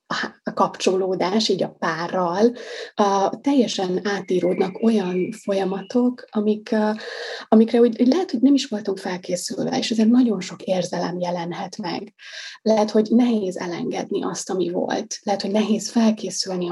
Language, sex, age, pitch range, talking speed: Hungarian, female, 20-39, 190-235 Hz, 140 wpm